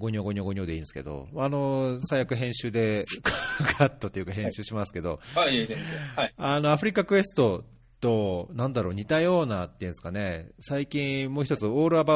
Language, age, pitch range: Japanese, 40-59, 90-135 Hz